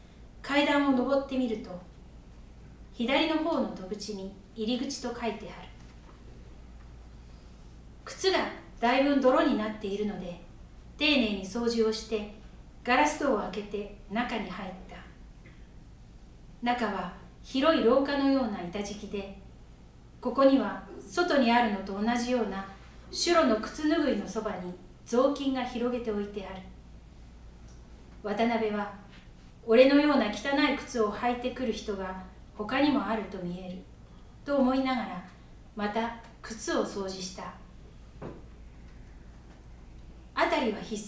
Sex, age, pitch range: female, 40-59, 185-255 Hz